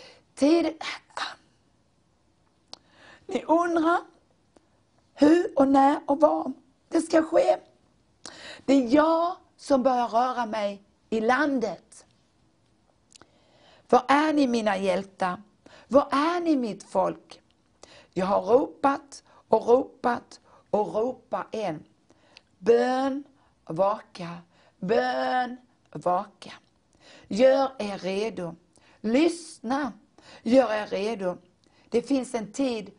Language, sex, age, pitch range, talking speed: Swedish, female, 60-79, 195-280 Hz, 95 wpm